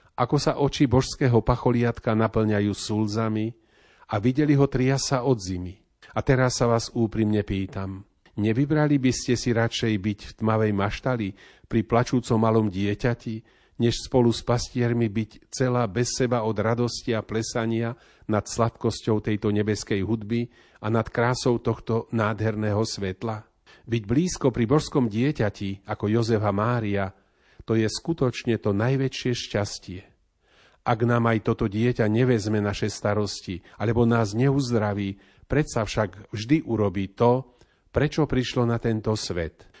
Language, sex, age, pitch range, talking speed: Slovak, male, 40-59, 105-120 Hz, 135 wpm